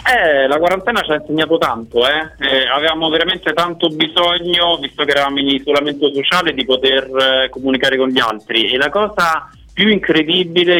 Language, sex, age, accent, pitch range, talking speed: Italian, male, 30-49, native, 135-175 Hz, 170 wpm